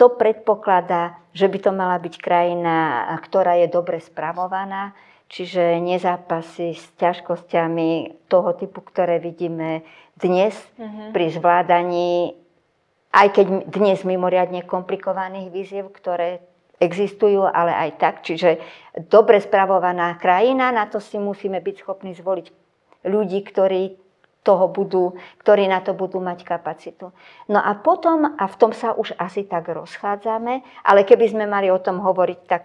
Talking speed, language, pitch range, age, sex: 135 wpm, Slovak, 175-200 Hz, 50-69, male